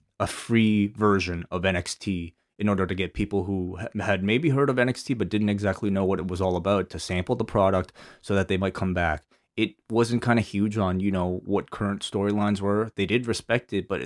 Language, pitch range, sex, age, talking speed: English, 95-115 Hz, male, 20-39, 220 wpm